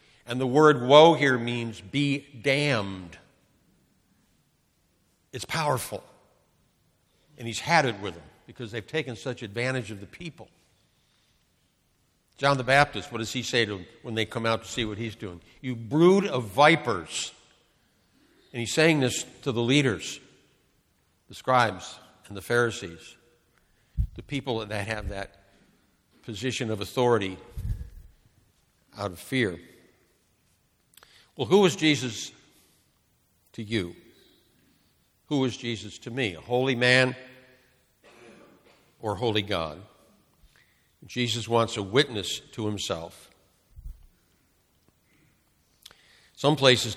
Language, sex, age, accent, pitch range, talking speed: English, male, 60-79, American, 105-130 Hz, 120 wpm